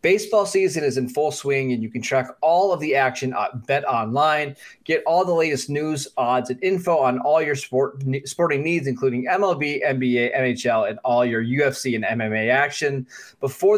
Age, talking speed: 30-49, 185 wpm